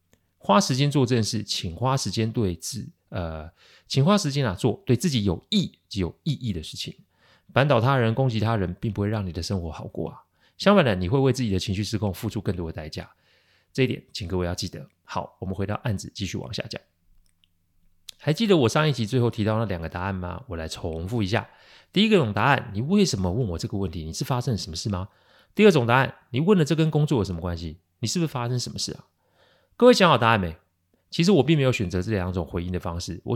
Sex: male